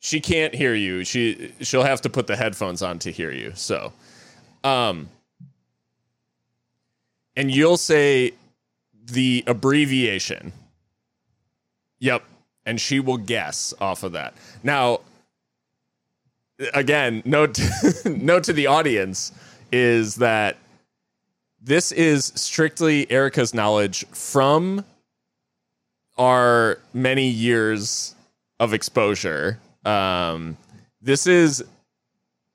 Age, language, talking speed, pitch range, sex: 30-49, English, 100 wpm, 110-150 Hz, male